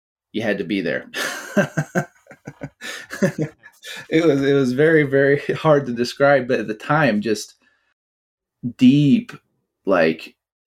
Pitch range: 90-140 Hz